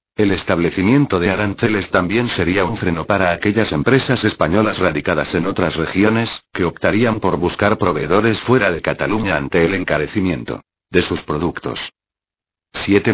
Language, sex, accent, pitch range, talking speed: Spanish, male, Spanish, 90-115 Hz, 140 wpm